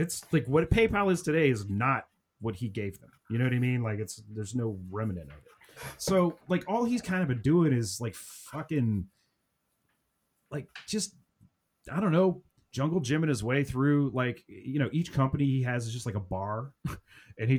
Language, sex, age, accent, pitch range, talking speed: English, male, 30-49, American, 110-150 Hz, 205 wpm